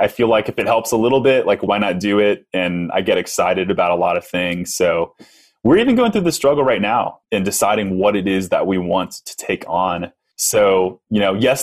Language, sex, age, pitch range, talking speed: English, male, 20-39, 90-110 Hz, 240 wpm